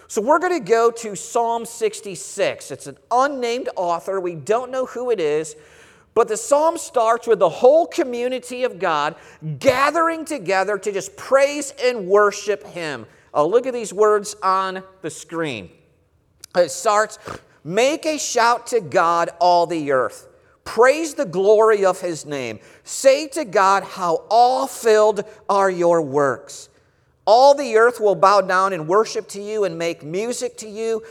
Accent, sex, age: American, male, 50-69